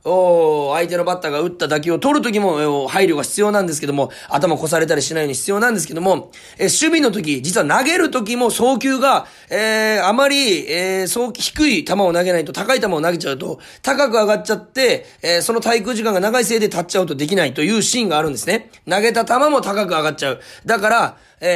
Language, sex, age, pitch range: Japanese, male, 30-49, 165-245 Hz